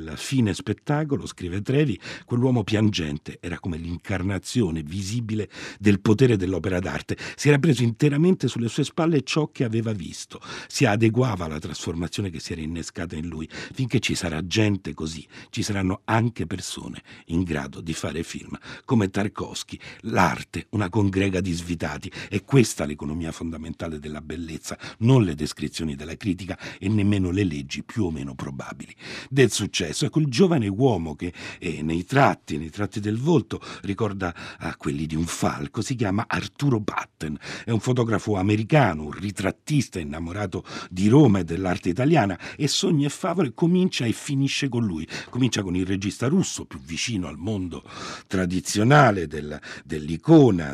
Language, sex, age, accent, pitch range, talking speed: Italian, male, 60-79, native, 85-130 Hz, 155 wpm